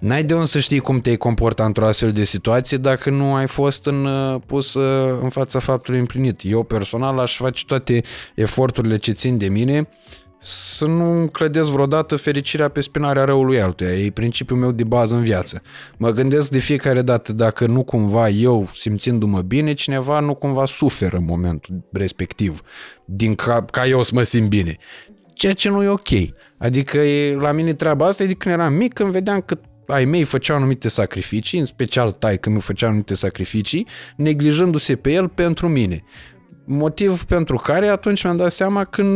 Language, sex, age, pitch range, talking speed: Romanian, male, 20-39, 110-150 Hz, 180 wpm